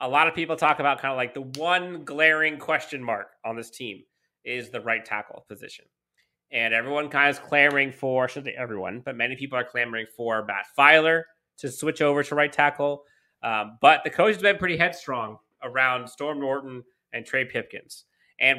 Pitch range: 120-145 Hz